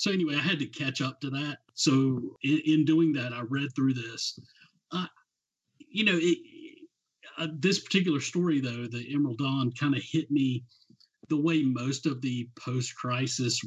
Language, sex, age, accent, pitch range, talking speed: English, male, 40-59, American, 120-150 Hz, 175 wpm